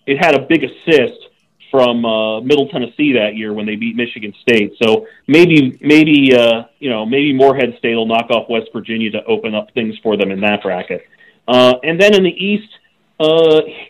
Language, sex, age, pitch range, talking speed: English, male, 40-59, 120-160 Hz, 200 wpm